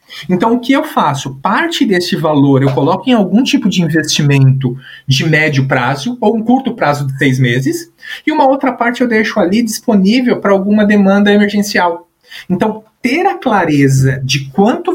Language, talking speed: Portuguese, 175 wpm